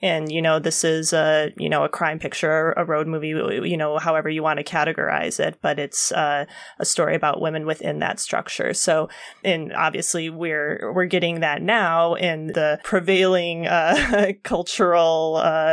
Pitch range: 160-190 Hz